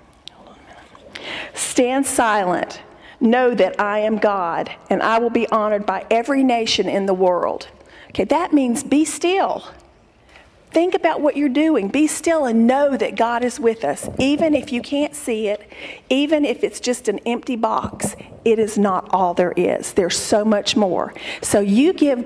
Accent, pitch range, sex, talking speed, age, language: American, 200-260 Hz, female, 170 wpm, 50-69, English